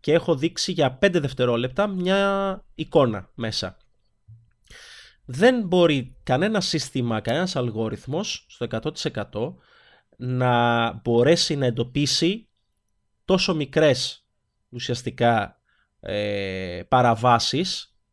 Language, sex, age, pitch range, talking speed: Greek, male, 30-49, 110-170 Hz, 85 wpm